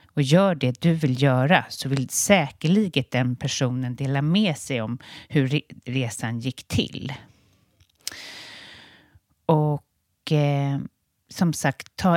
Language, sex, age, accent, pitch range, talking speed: Swedish, female, 30-49, native, 125-150 Hz, 115 wpm